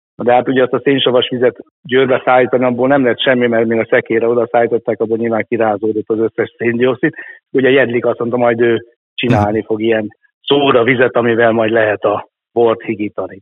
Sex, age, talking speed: male, 60-79, 185 wpm